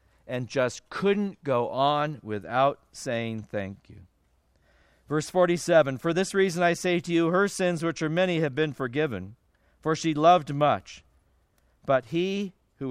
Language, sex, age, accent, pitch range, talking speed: English, male, 50-69, American, 105-175 Hz, 155 wpm